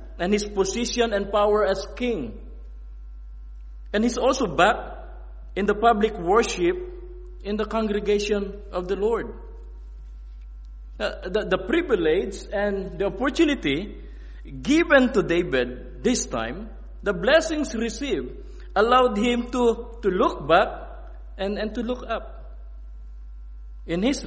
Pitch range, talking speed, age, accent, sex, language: 140-225 Hz, 120 wpm, 50-69, Filipino, male, English